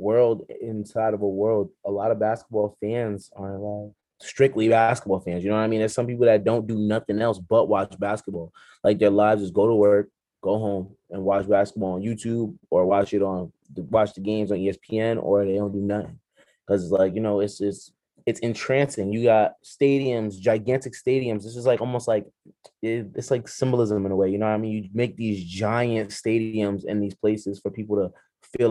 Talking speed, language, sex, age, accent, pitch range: 210 wpm, English, male, 20-39, American, 100-120 Hz